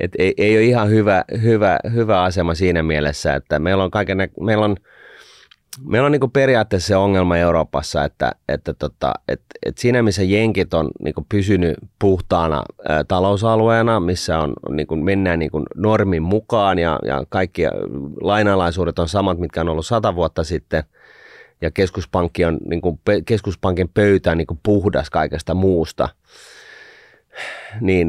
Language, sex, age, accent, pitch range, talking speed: Finnish, male, 30-49, native, 80-100 Hz, 150 wpm